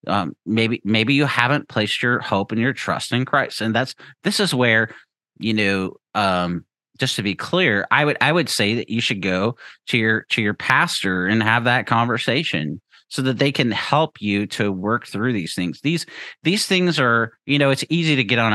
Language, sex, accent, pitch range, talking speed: English, male, American, 100-130 Hz, 210 wpm